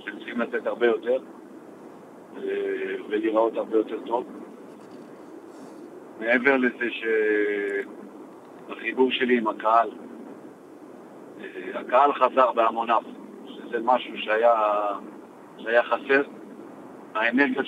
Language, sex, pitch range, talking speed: Hebrew, male, 120-155 Hz, 80 wpm